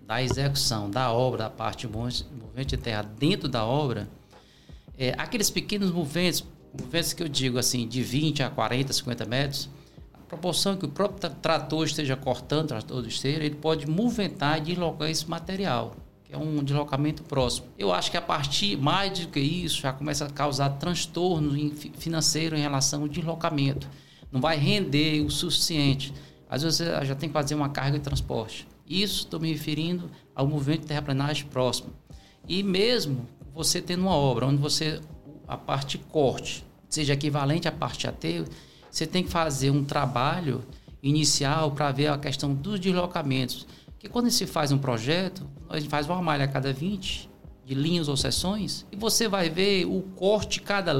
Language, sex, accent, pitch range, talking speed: English, male, Brazilian, 135-170 Hz, 175 wpm